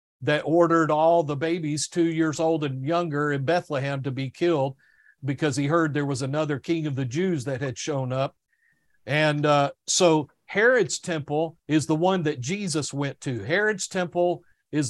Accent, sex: American, male